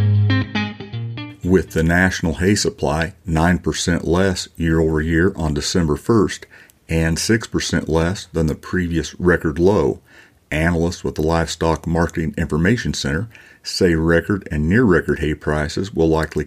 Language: English